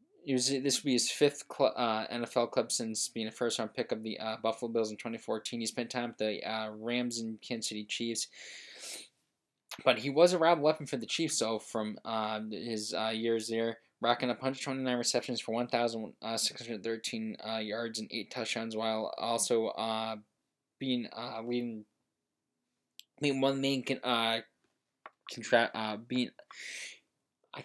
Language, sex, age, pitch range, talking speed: English, male, 20-39, 110-125 Hz, 150 wpm